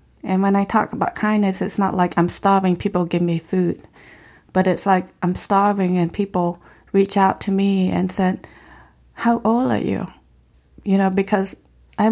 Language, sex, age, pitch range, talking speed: English, female, 30-49, 180-205 Hz, 180 wpm